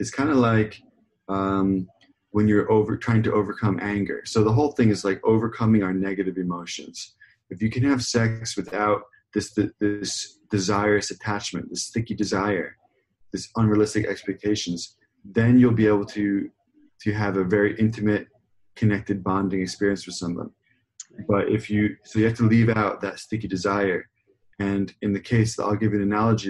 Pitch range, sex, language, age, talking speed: 95-110 Hz, male, English, 20-39, 170 wpm